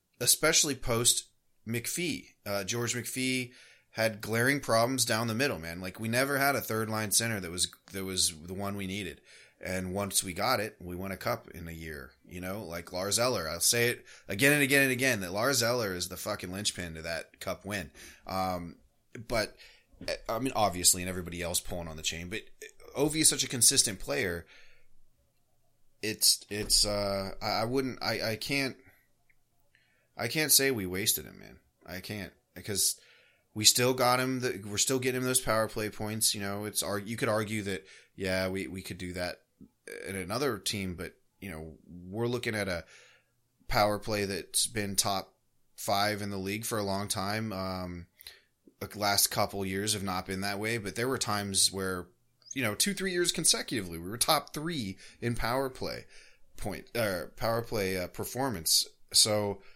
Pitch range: 95-120 Hz